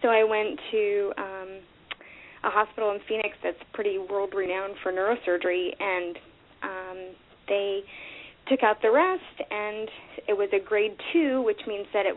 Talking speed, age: 155 wpm, 20-39